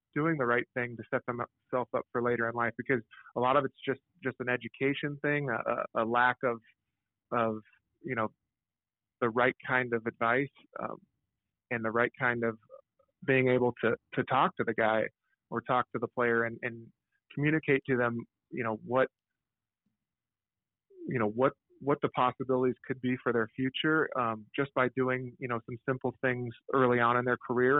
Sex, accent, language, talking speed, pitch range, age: male, American, English, 190 wpm, 115-130 Hz, 30-49